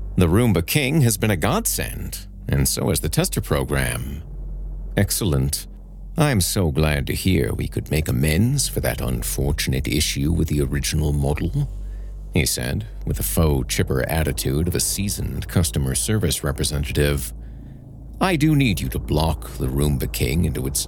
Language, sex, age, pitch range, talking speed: English, male, 50-69, 75-100 Hz, 160 wpm